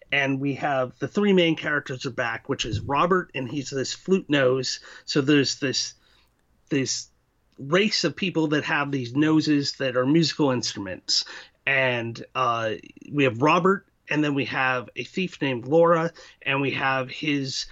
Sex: male